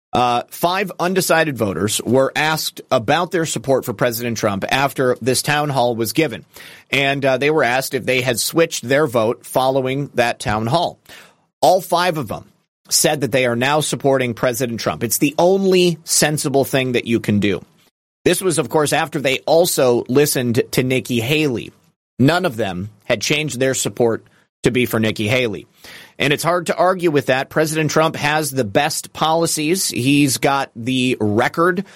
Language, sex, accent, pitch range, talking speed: English, male, American, 130-160 Hz, 175 wpm